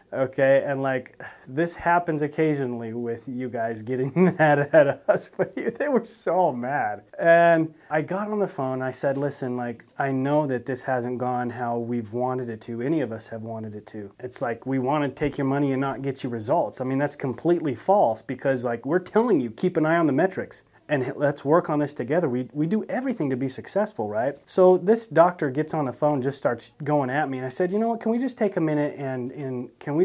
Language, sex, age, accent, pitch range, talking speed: English, male, 30-49, American, 120-160 Hz, 235 wpm